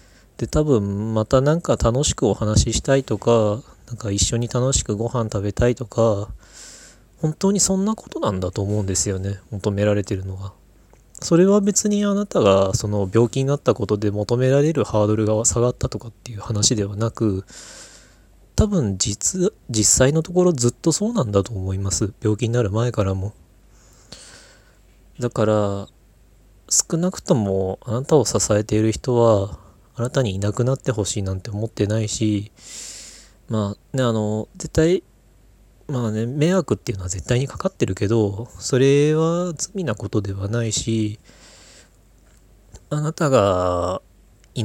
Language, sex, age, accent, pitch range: Japanese, male, 20-39, native, 100-130 Hz